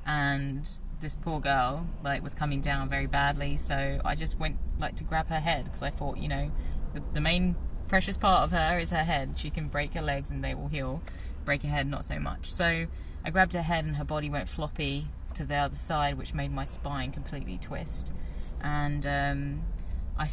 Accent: British